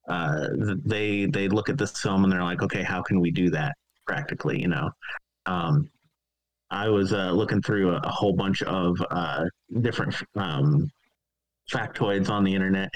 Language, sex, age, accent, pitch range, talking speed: English, male, 30-49, American, 90-115 Hz, 170 wpm